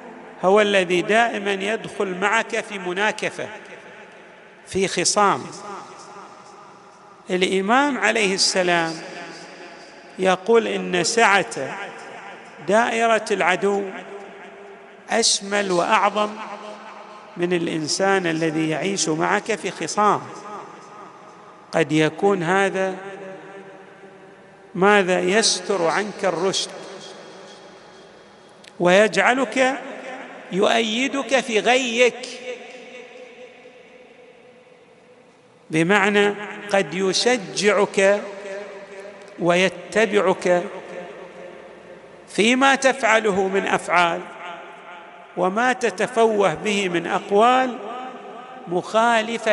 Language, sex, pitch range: Arabic, male, 180-225 Hz